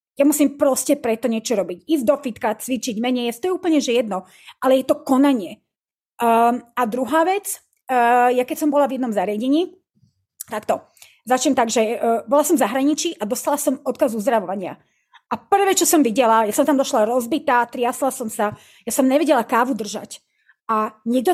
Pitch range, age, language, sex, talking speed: 235-305 Hz, 30-49, Slovak, female, 185 wpm